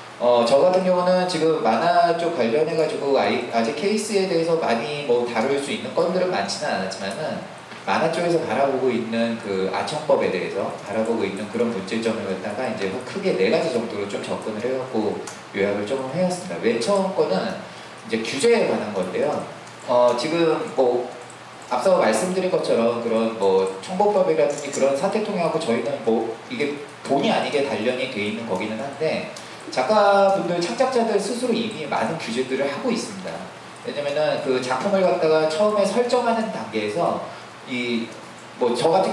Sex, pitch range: male, 115-185 Hz